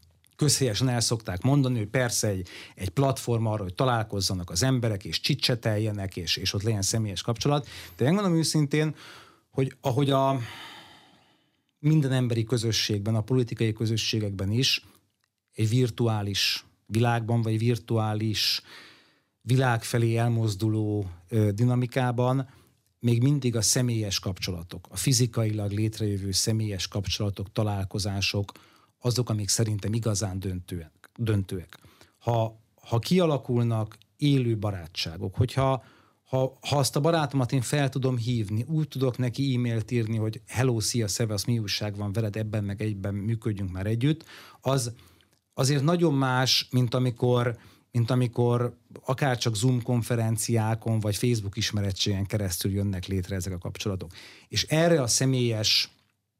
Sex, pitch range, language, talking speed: male, 105-125 Hz, Hungarian, 130 wpm